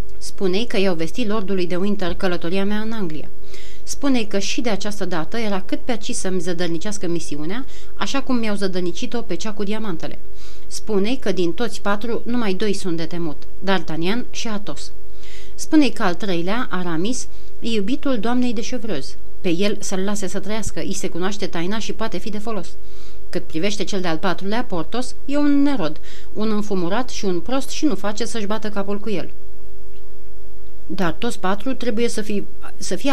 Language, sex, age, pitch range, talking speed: Romanian, female, 30-49, 185-225 Hz, 180 wpm